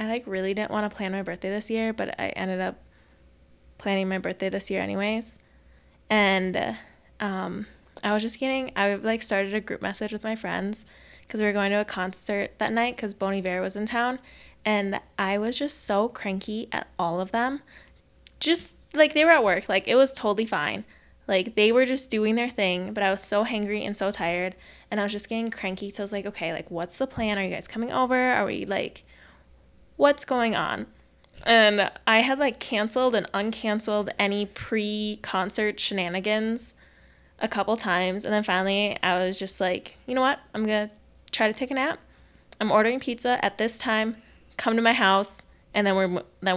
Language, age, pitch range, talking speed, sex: English, 10-29, 190-225 Hz, 205 wpm, female